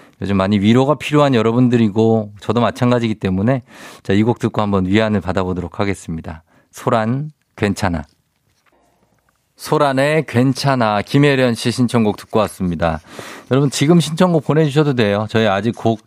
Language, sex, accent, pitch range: Korean, male, native, 95-120 Hz